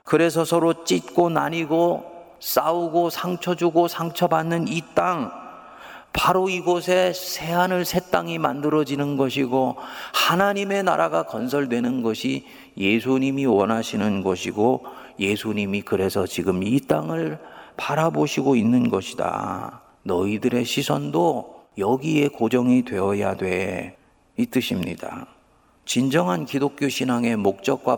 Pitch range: 105-165 Hz